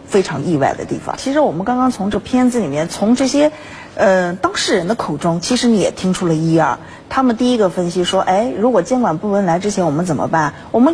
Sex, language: female, Chinese